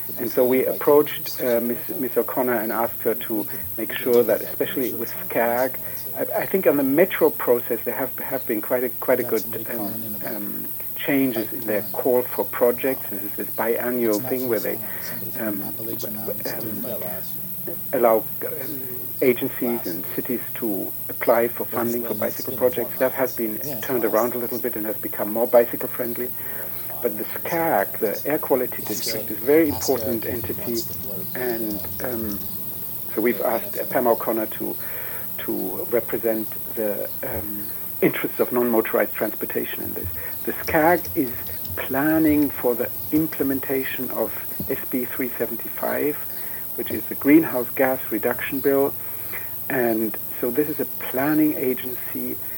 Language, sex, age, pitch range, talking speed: English, male, 60-79, 110-130 Hz, 145 wpm